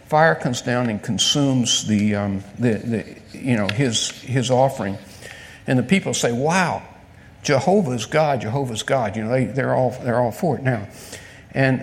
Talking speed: 170 wpm